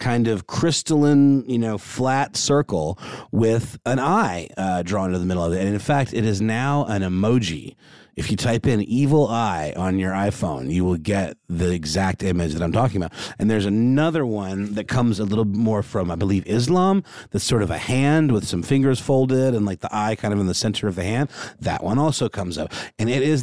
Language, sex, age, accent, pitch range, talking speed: English, male, 30-49, American, 100-130 Hz, 220 wpm